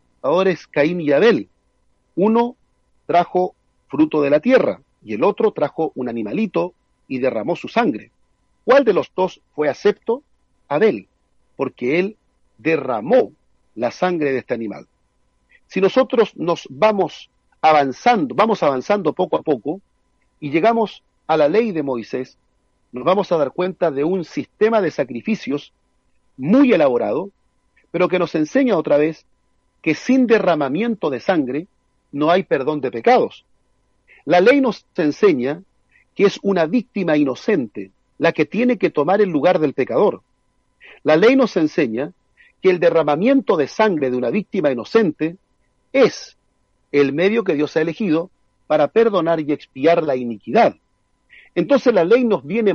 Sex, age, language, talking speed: male, 40-59, Spanish, 150 wpm